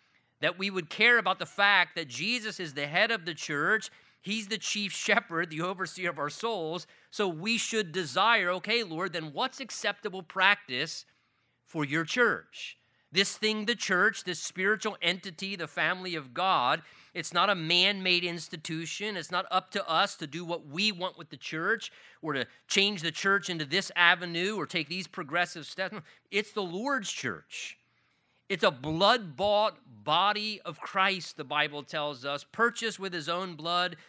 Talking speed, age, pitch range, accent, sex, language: 175 wpm, 30-49, 160-210 Hz, American, male, English